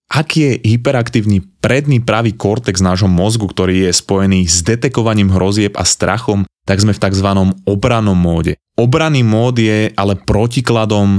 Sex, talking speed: male, 145 wpm